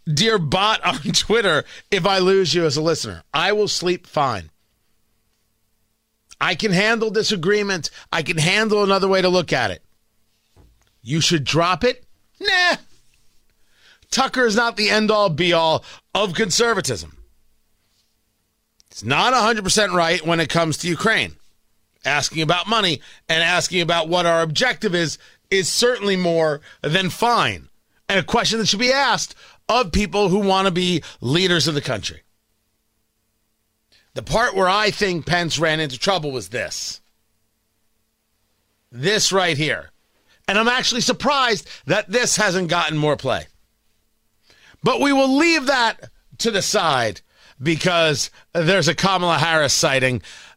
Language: English